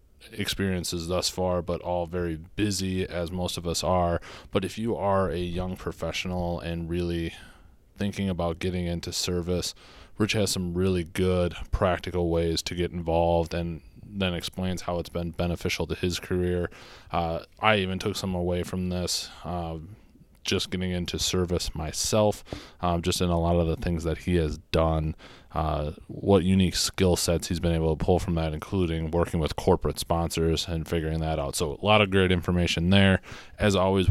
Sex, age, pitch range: male, 20-39, 85-90 Hz